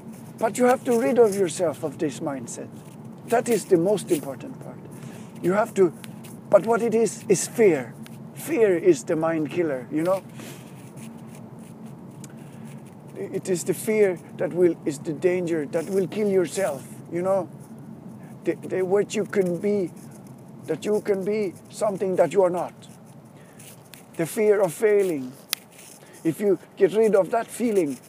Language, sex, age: English, male, 50-69